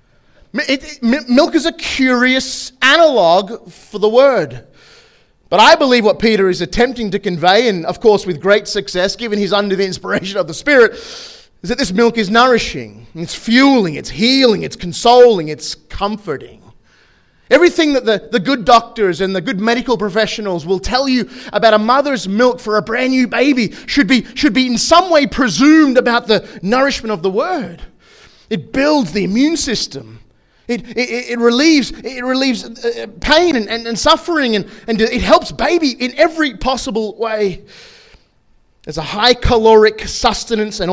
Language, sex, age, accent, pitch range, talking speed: English, male, 30-49, Australian, 195-255 Hz, 170 wpm